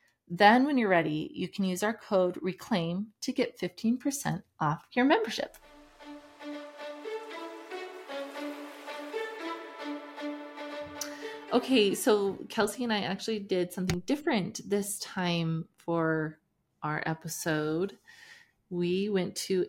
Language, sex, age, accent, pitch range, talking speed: English, female, 30-49, American, 170-235 Hz, 100 wpm